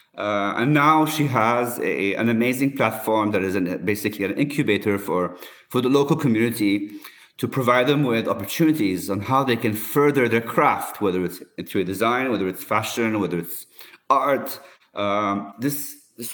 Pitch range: 105-145 Hz